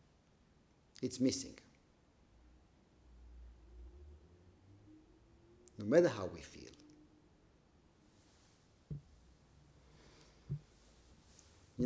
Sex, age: male, 50-69